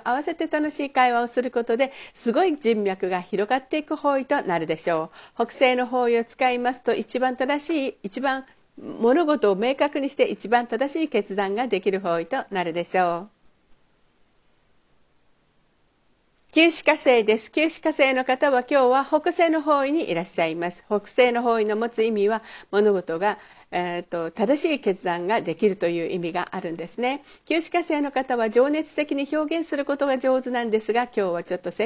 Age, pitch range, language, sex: 50-69, 200-285 Hz, Japanese, female